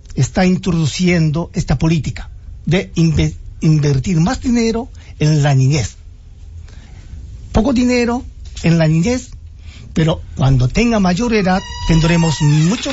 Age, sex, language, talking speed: 50-69, male, English, 105 wpm